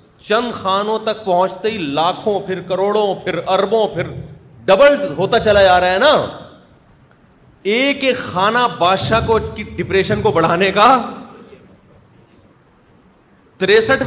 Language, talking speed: Urdu, 120 wpm